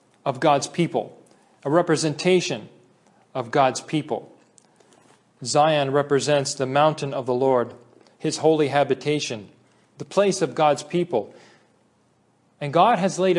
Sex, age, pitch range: male, 40-59, 135-170 Hz